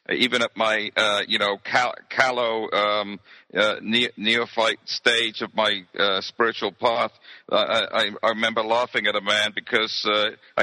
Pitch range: 110-130 Hz